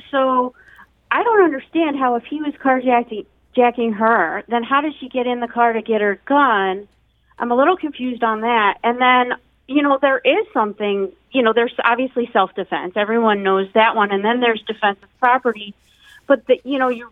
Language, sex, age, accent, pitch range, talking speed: English, female, 40-59, American, 195-245 Hz, 195 wpm